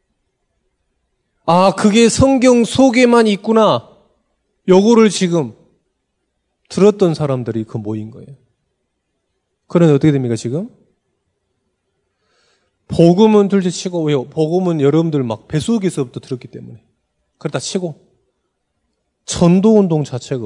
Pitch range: 145-215 Hz